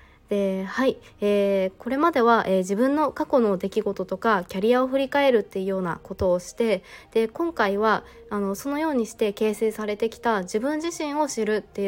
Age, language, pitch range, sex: 20-39, Japanese, 195-255 Hz, female